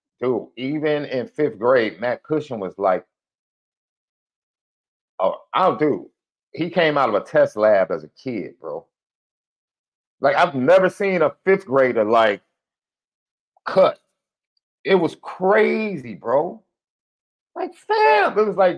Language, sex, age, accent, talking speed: English, male, 40-59, American, 130 wpm